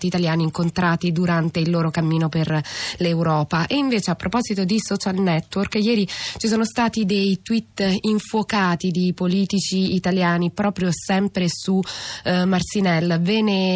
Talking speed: 140 wpm